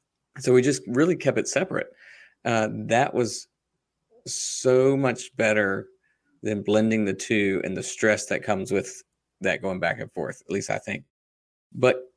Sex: male